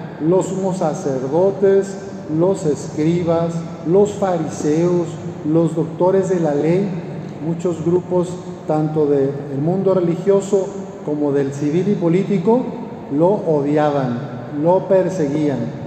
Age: 50-69